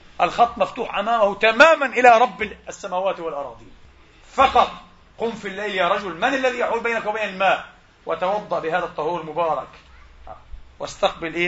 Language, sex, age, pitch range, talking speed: Arabic, male, 40-59, 175-245 Hz, 130 wpm